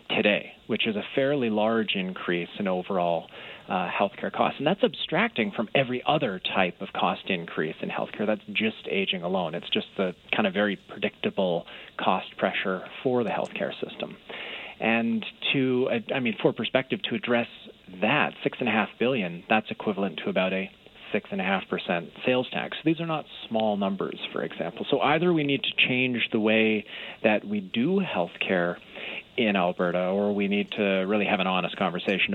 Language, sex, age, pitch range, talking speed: English, male, 30-49, 95-145 Hz, 180 wpm